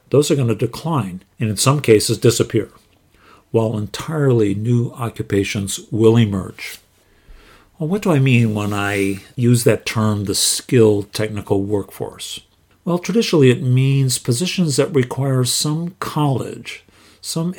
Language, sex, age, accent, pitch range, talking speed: English, male, 50-69, American, 105-130 Hz, 135 wpm